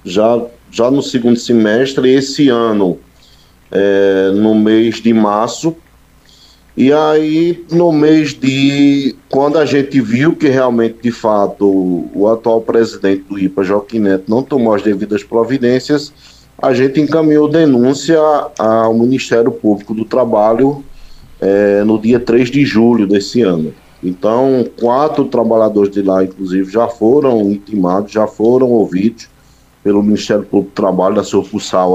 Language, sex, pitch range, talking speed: Portuguese, male, 100-135 Hz, 135 wpm